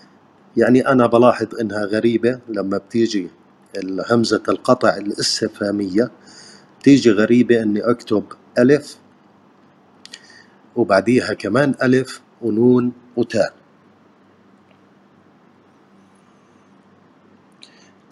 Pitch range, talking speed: 110-125 Hz, 70 wpm